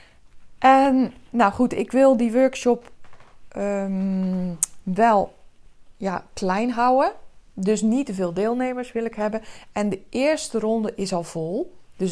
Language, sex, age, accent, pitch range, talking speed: Dutch, female, 20-39, Dutch, 195-265 Hz, 130 wpm